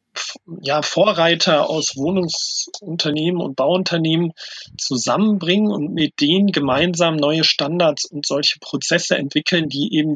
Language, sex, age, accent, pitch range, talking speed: German, male, 40-59, German, 145-180 Hz, 105 wpm